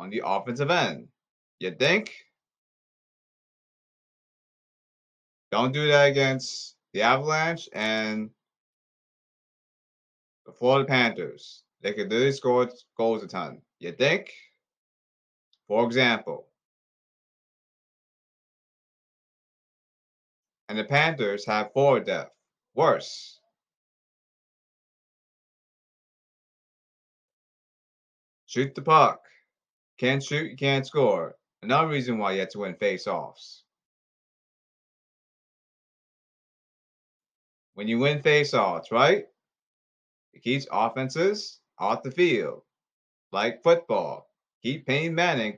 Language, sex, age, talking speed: English, male, 30-49, 90 wpm